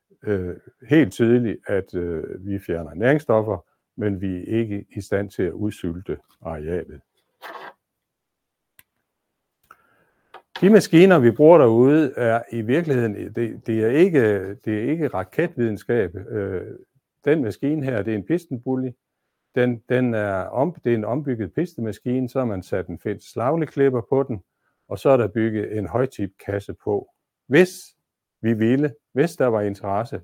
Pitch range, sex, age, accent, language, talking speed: 100-130 Hz, male, 60-79, native, Danish, 145 wpm